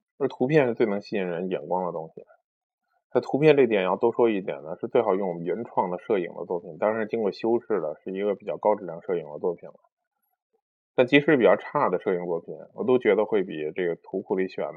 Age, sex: 20-39, male